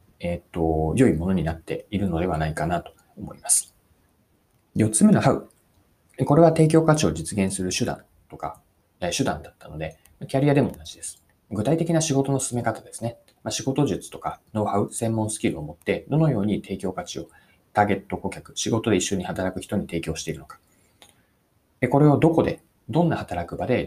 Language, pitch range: Japanese, 90-145 Hz